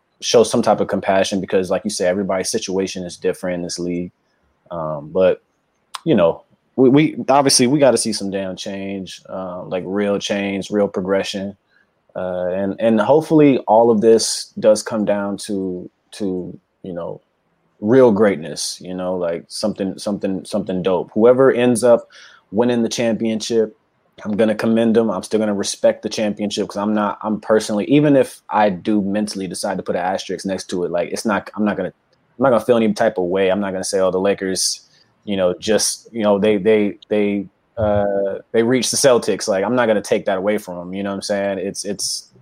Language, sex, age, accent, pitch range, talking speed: English, male, 20-39, American, 95-110 Hz, 200 wpm